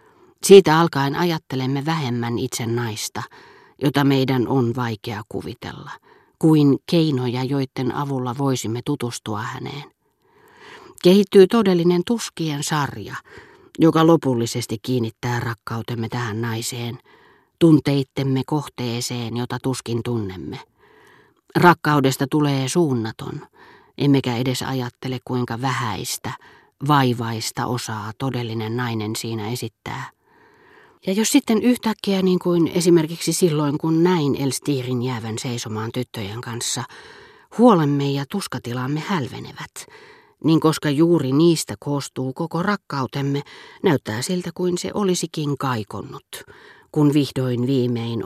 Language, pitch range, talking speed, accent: Finnish, 120-175 Hz, 100 wpm, native